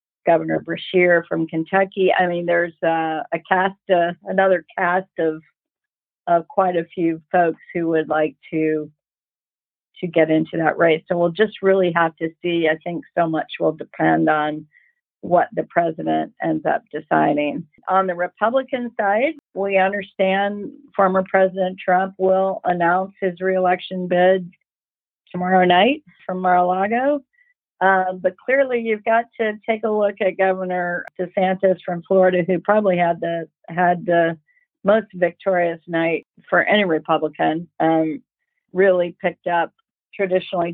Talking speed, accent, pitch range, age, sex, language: 145 wpm, American, 165-190 Hz, 50-69, female, English